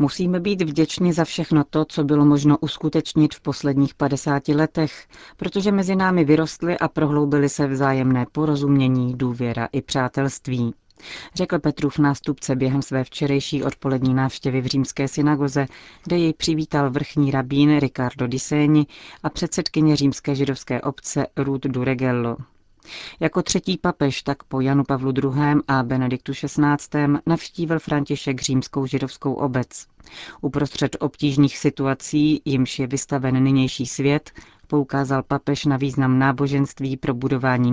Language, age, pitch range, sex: Czech, 30-49, 130-150 Hz, female